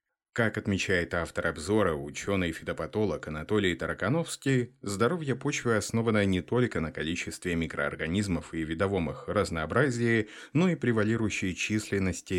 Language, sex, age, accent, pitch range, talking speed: Russian, male, 30-49, native, 90-110 Hz, 110 wpm